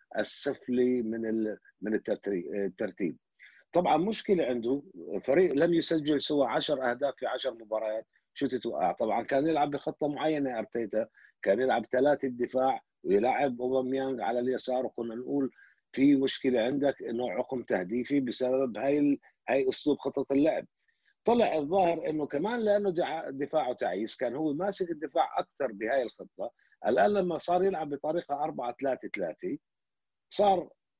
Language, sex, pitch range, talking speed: Arabic, male, 125-165 Hz, 135 wpm